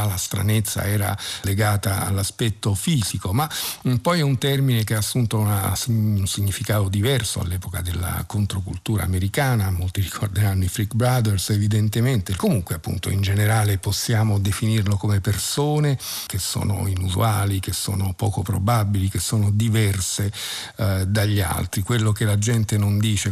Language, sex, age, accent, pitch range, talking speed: Italian, male, 50-69, native, 100-115 Hz, 140 wpm